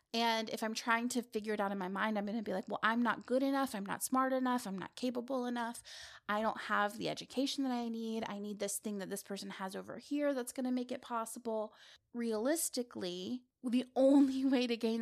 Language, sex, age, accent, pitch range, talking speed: English, female, 20-39, American, 215-275 Hz, 235 wpm